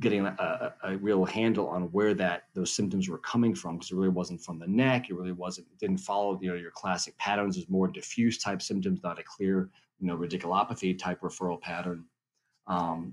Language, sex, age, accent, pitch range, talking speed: English, male, 30-49, American, 90-110 Hz, 220 wpm